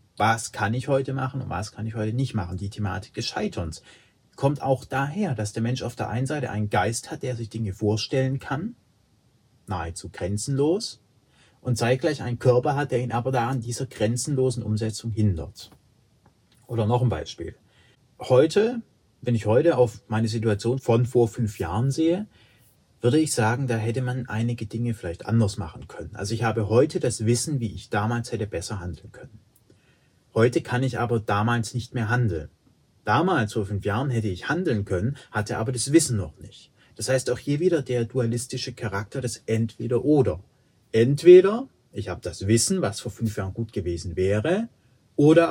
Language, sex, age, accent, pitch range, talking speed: German, male, 30-49, German, 110-130 Hz, 180 wpm